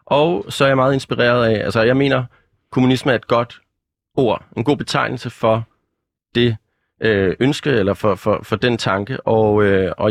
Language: Danish